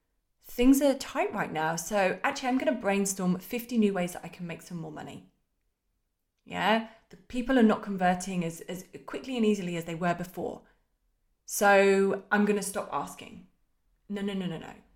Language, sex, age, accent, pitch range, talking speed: English, female, 20-39, British, 180-235 Hz, 190 wpm